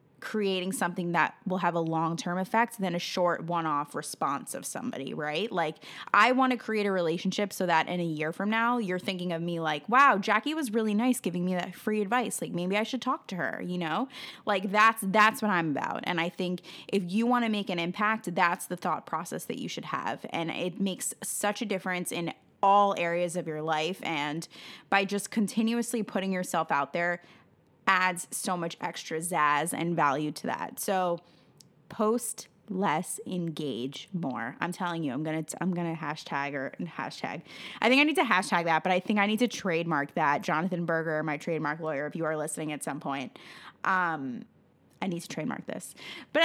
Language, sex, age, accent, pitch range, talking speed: English, female, 20-39, American, 165-215 Hz, 200 wpm